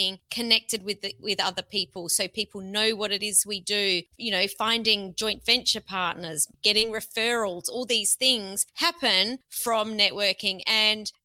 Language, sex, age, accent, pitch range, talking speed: English, female, 30-49, Australian, 195-240 Hz, 155 wpm